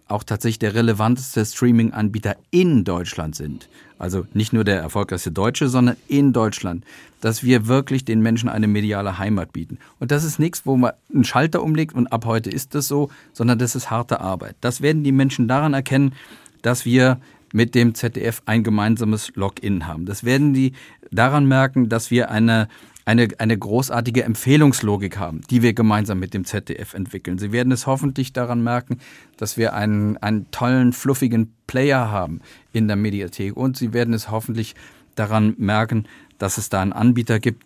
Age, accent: 40-59, German